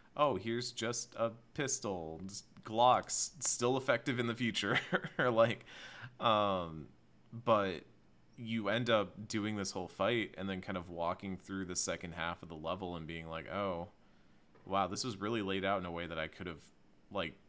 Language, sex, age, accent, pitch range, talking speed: English, male, 30-49, American, 80-100 Hz, 180 wpm